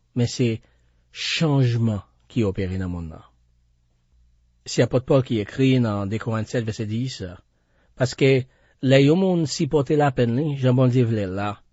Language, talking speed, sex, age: French, 145 wpm, male, 40-59